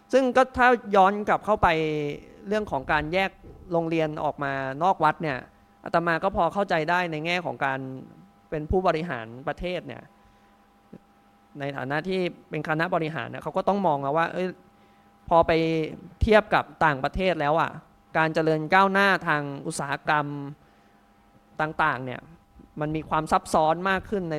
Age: 20-39